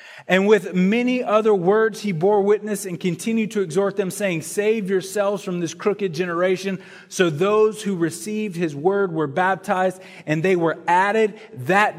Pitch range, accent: 145-195 Hz, American